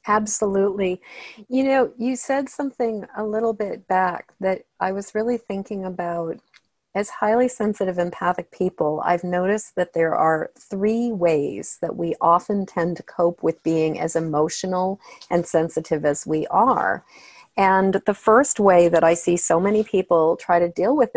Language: English